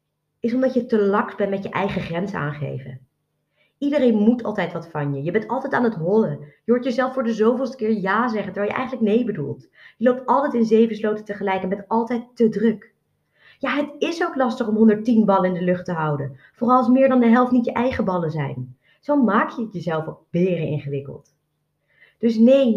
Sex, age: female, 20-39